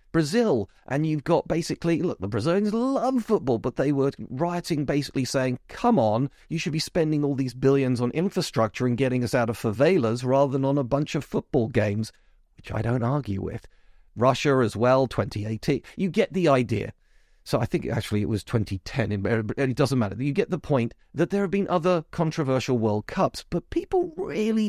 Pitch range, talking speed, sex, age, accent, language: 110-155 Hz, 195 wpm, male, 40-59, British, English